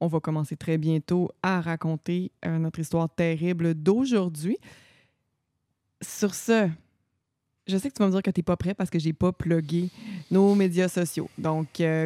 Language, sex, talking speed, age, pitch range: French, female, 185 wpm, 20-39, 165-195 Hz